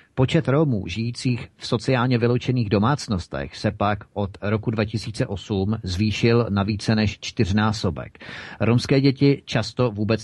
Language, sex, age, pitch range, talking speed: Czech, male, 40-59, 95-120 Hz, 125 wpm